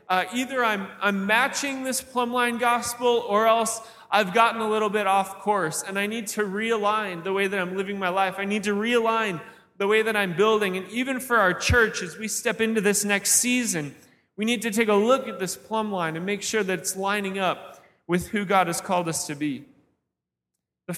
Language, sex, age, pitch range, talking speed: English, male, 20-39, 175-220 Hz, 220 wpm